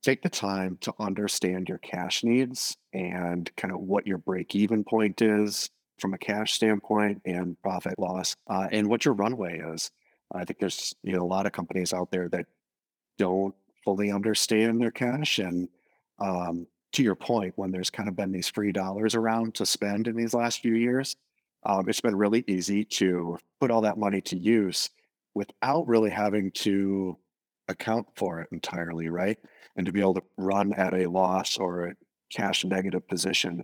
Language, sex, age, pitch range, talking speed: English, male, 30-49, 90-110 Hz, 180 wpm